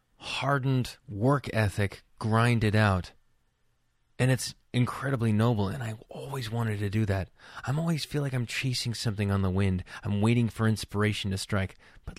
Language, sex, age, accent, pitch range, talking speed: English, male, 20-39, American, 100-125 Hz, 160 wpm